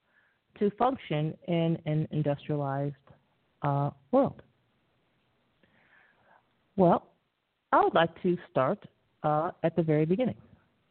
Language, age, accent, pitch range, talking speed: English, 40-59, American, 155-210 Hz, 100 wpm